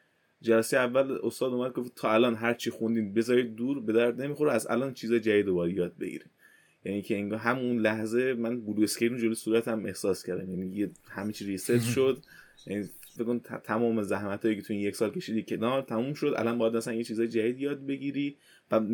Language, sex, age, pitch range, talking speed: Persian, male, 20-39, 100-120 Hz, 185 wpm